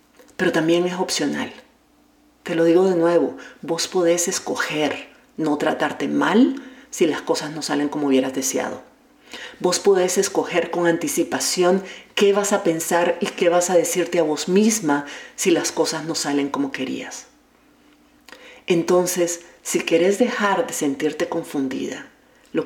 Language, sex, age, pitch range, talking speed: Spanish, female, 40-59, 155-205 Hz, 145 wpm